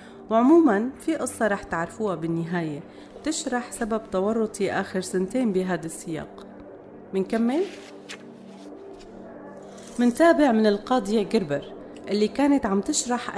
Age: 40-59